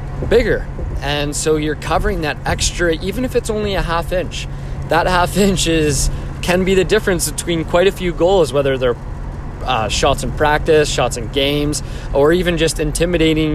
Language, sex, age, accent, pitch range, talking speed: English, male, 20-39, American, 125-150 Hz, 175 wpm